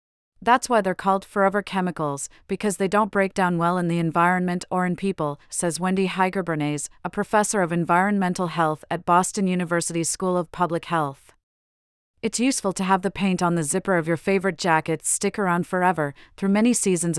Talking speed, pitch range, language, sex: 180 wpm, 165-200 Hz, English, female